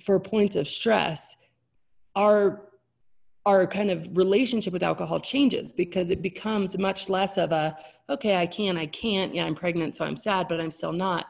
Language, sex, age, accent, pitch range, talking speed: English, female, 30-49, American, 160-195 Hz, 180 wpm